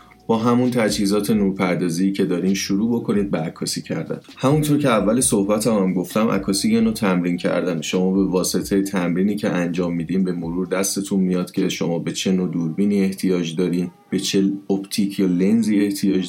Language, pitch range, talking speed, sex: Persian, 90-105 Hz, 170 wpm, male